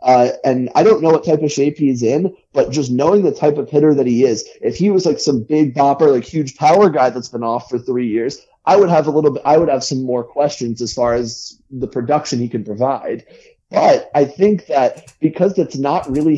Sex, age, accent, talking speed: male, 30-49, American, 240 wpm